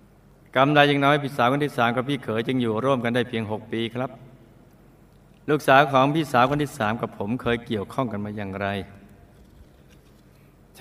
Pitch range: 110-135 Hz